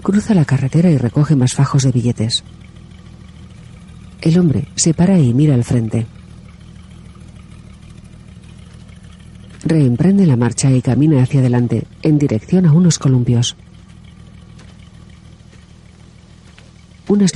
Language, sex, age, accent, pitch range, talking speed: Spanish, female, 40-59, Spanish, 115-160 Hz, 105 wpm